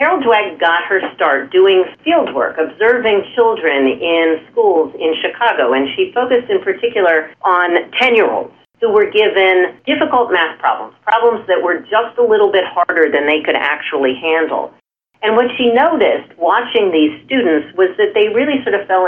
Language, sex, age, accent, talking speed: English, female, 40-59, American, 170 wpm